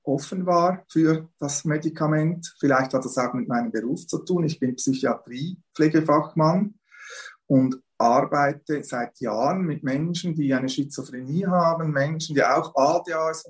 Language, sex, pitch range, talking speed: German, male, 140-175 Hz, 140 wpm